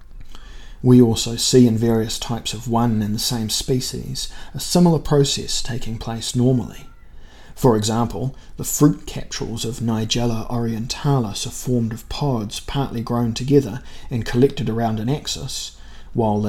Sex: male